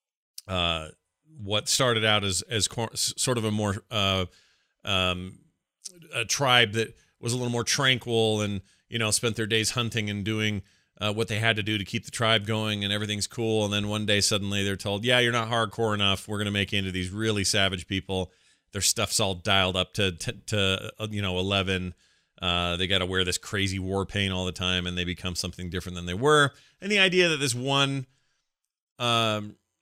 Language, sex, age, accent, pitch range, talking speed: English, male, 40-59, American, 95-115 Hz, 210 wpm